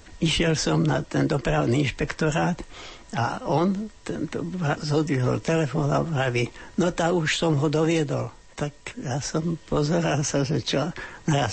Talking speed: 135 wpm